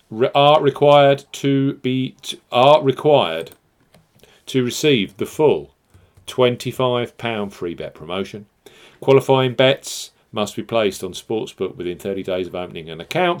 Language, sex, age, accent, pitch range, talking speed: English, male, 40-59, British, 105-130 Hz, 135 wpm